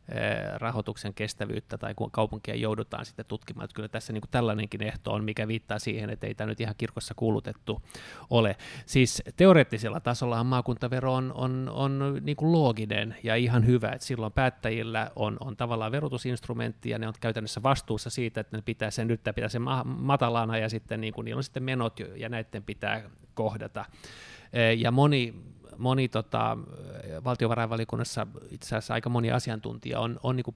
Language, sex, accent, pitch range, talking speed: Finnish, male, native, 110-125 Hz, 165 wpm